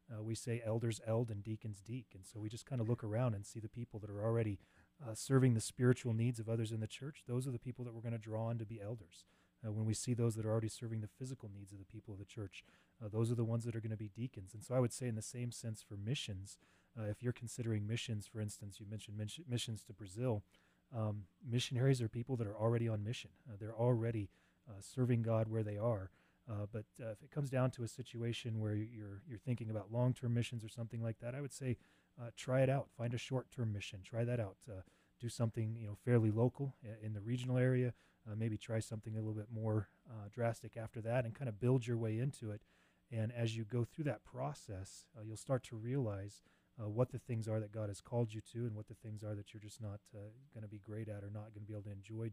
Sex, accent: male, Canadian